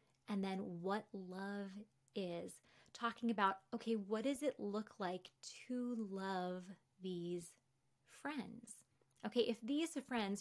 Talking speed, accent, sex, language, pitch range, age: 120 wpm, American, female, English, 185-235 Hz, 20-39